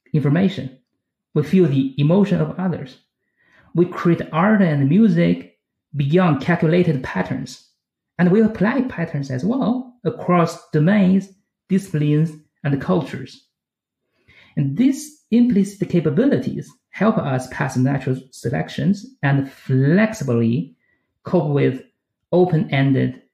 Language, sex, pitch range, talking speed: English, male, 135-190 Hz, 105 wpm